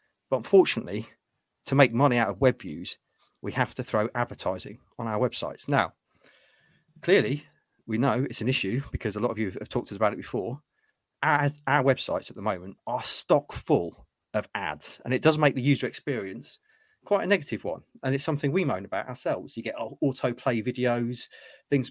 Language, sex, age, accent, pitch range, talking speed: English, male, 30-49, British, 120-150 Hz, 190 wpm